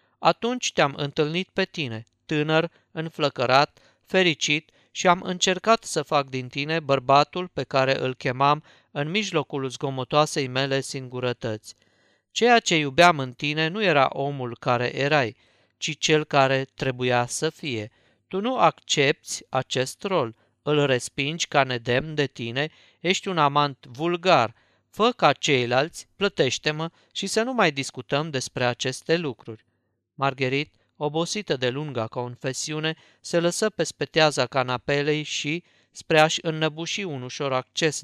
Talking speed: 135 wpm